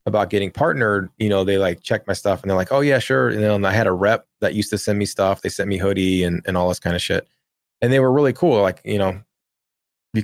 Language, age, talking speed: English, 20-39, 285 wpm